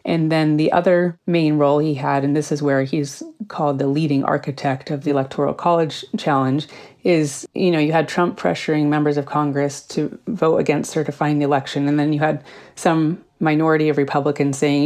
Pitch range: 140-165 Hz